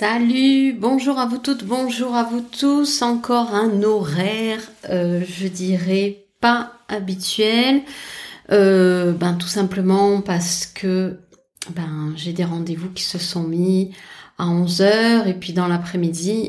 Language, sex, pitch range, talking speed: French, female, 185-240 Hz, 135 wpm